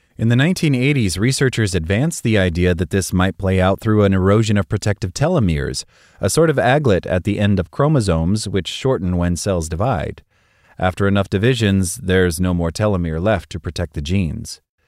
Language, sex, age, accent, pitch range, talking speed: English, male, 30-49, American, 90-115 Hz, 180 wpm